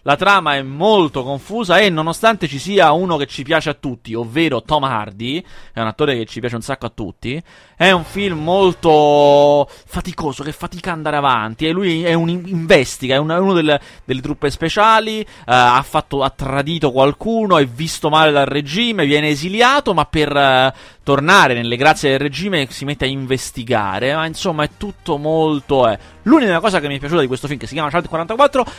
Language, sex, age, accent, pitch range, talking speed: Italian, male, 30-49, native, 120-170 Hz, 195 wpm